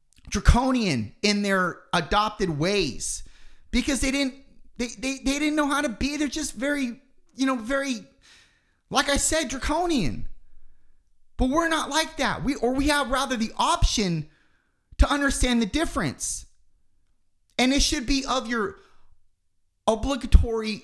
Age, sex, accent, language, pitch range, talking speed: 30-49, male, American, English, 200-280 Hz, 140 wpm